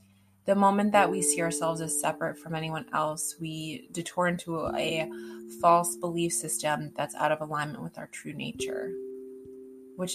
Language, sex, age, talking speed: English, female, 20-39, 160 wpm